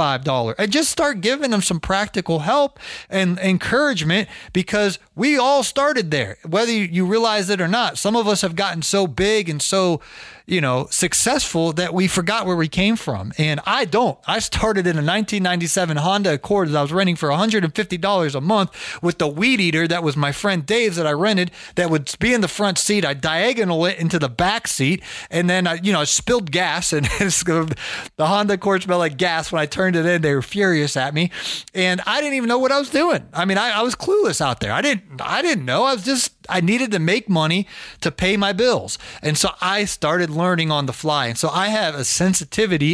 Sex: male